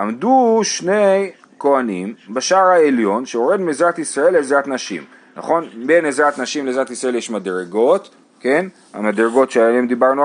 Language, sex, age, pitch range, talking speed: Hebrew, male, 30-49, 120-175 Hz, 130 wpm